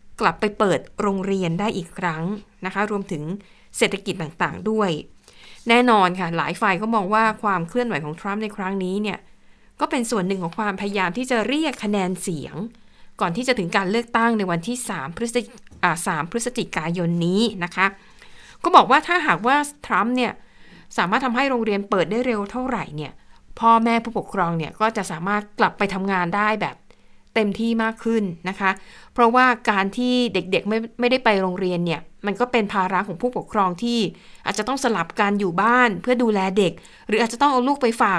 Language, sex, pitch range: Thai, female, 190-235 Hz